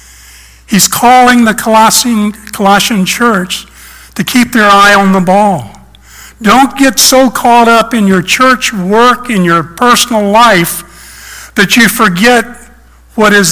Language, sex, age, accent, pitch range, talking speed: English, male, 60-79, American, 155-220 Hz, 140 wpm